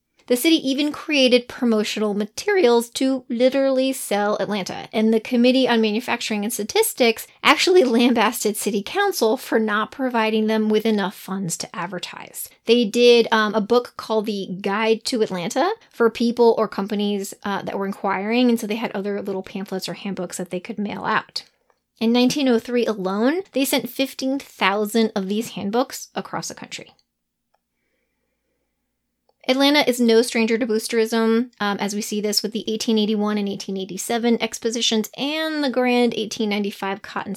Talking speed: 155 wpm